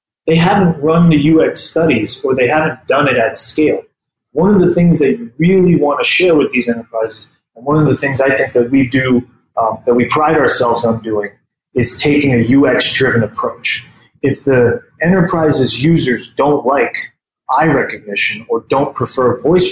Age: 20-39